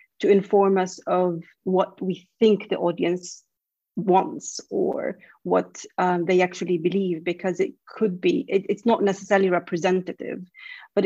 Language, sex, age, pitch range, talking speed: English, female, 30-49, 185-215 Hz, 135 wpm